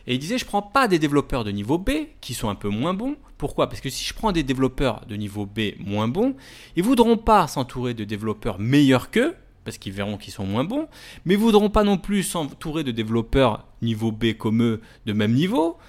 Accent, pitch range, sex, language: French, 115-180 Hz, male, French